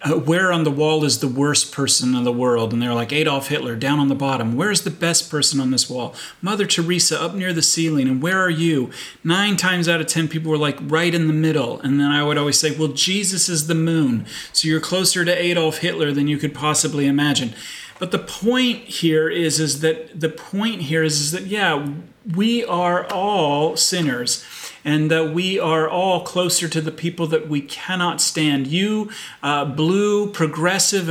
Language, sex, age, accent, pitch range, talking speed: English, male, 40-59, American, 150-180 Hz, 205 wpm